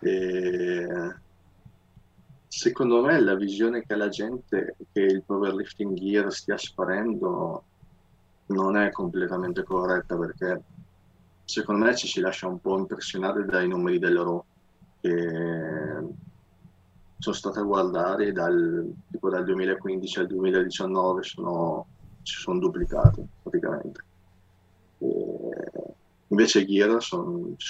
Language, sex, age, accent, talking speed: Italian, male, 20-39, native, 110 wpm